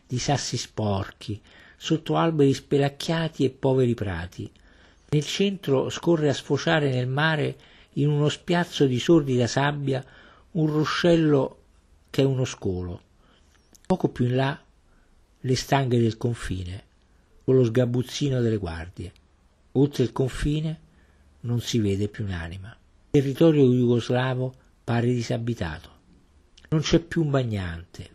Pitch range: 95-140 Hz